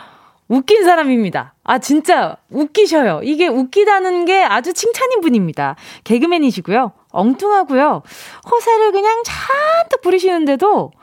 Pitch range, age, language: 210-335 Hz, 20-39, Korean